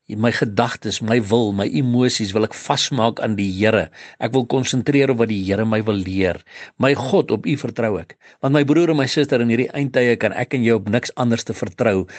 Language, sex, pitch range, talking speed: English, male, 105-130 Hz, 220 wpm